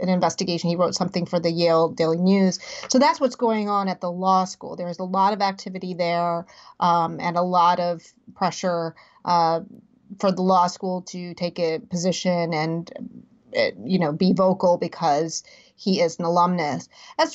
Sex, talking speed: female, 180 wpm